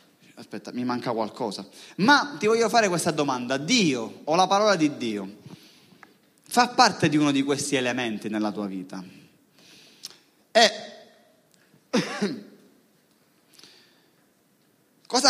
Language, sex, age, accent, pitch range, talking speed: Italian, male, 30-49, native, 120-175 Hz, 110 wpm